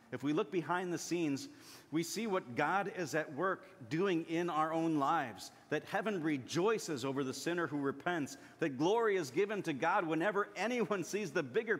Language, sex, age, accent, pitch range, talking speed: English, male, 40-59, American, 130-185 Hz, 190 wpm